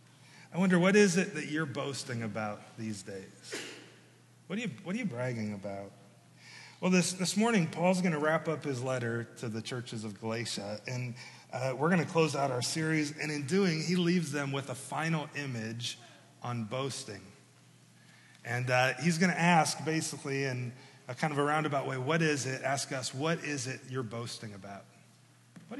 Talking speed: 190 wpm